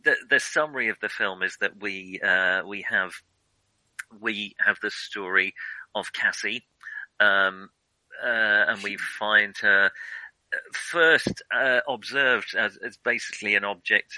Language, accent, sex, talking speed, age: English, British, male, 135 wpm, 40-59